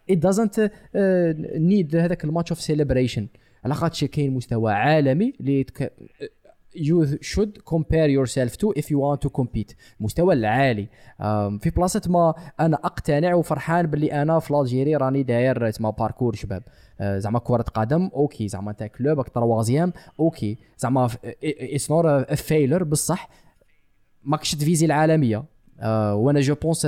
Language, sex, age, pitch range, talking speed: Arabic, male, 20-39, 125-165 Hz, 110 wpm